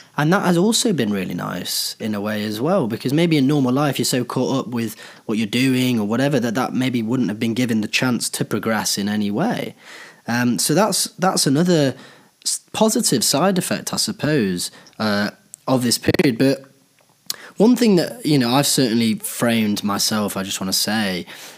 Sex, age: male, 20-39